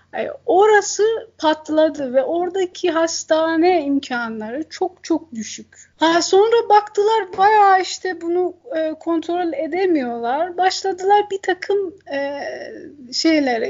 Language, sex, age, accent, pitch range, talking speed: Turkish, female, 30-49, native, 280-350 Hz, 100 wpm